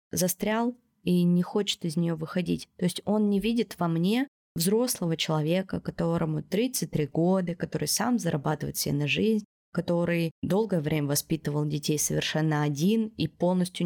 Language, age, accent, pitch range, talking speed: Russian, 20-39, native, 160-215 Hz, 145 wpm